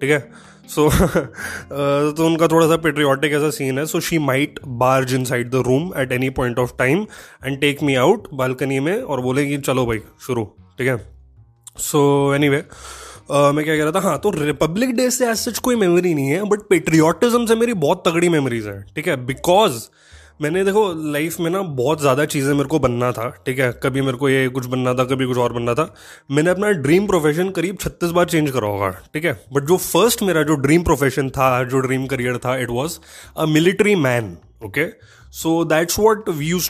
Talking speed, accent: 215 wpm, native